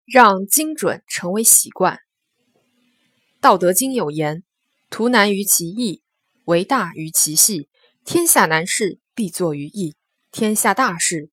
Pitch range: 175-260 Hz